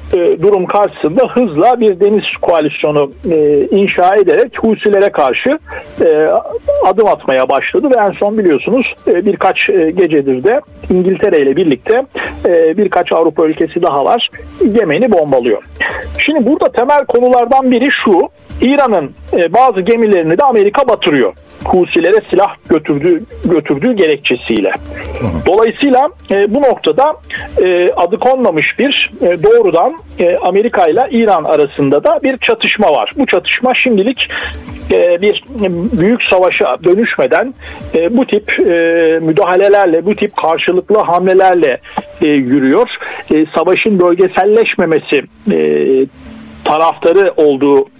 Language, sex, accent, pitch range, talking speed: Turkish, male, native, 160-270 Hz, 115 wpm